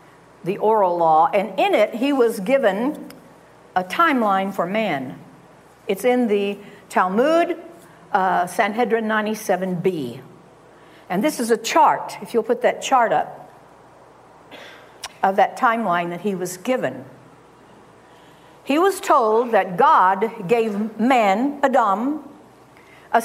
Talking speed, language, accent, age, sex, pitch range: 120 wpm, English, American, 60-79, female, 205-280 Hz